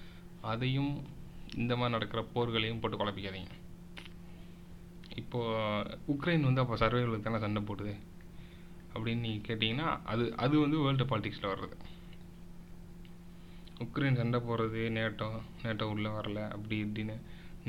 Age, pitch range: 20-39, 100-125 Hz